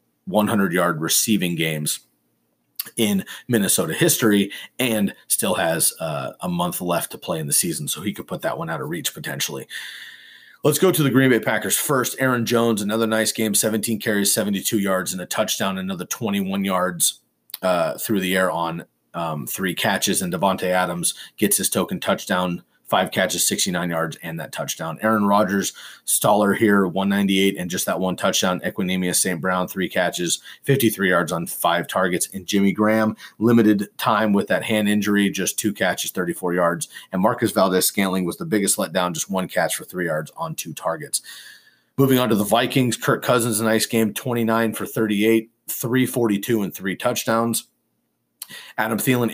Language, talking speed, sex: English, 175 wpm, male